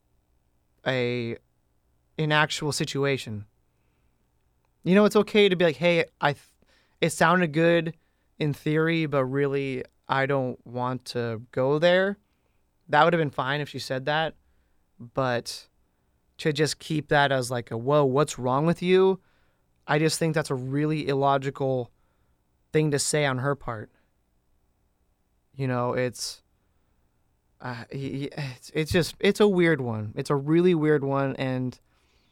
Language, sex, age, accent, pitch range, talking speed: English, male, 20-39, American, 110-155 Hz, 145 wpm